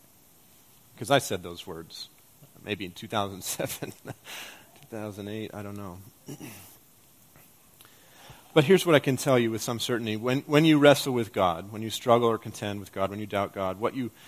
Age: 30-49